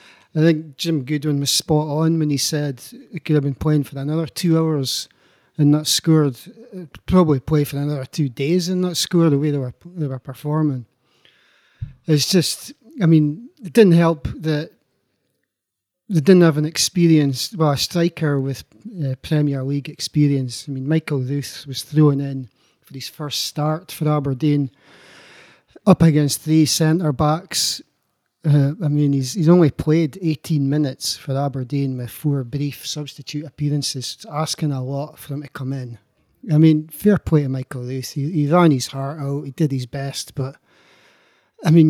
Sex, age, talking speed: male, 40-59, 175 wpm